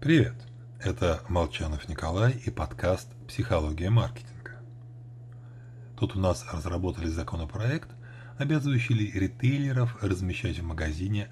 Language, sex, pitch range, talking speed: Russian, male, 95-120 Hz, 110 wpm